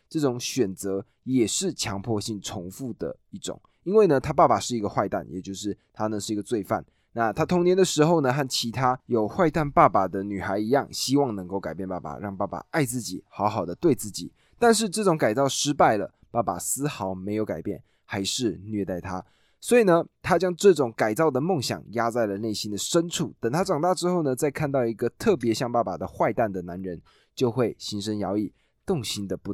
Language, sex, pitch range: Chinese, male, 100-145 Hz